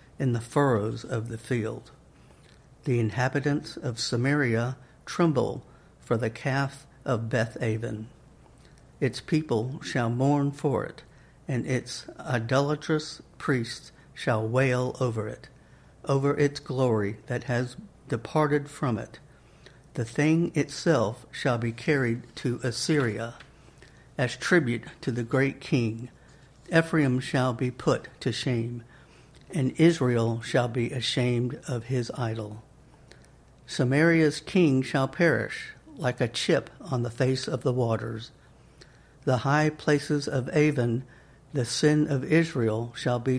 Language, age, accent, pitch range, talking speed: English, 60-79, American, 120-145 Hz, 125 wpm